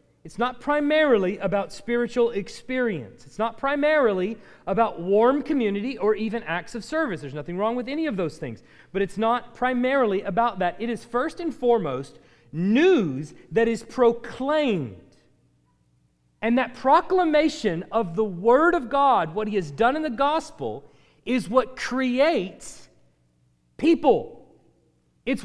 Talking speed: 140 wpm